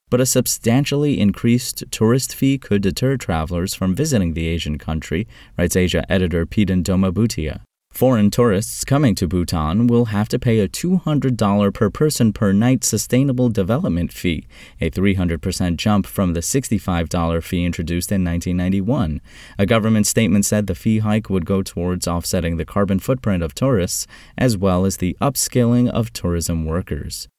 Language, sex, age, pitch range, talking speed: English, male, 20-39, 85-115 Hz, 155 wpm